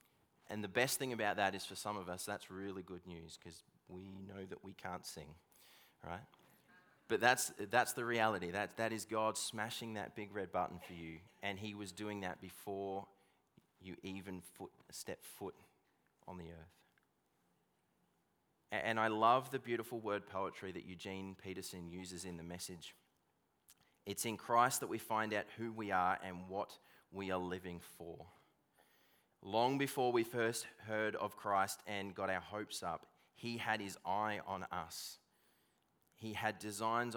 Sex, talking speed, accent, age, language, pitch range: male, 170 wpm, Australian, 20-39, English, 90-110 Hz